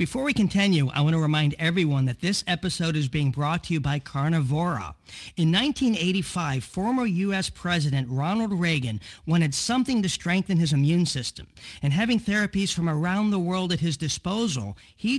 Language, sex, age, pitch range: English, male, 50-69, 145-195 Hz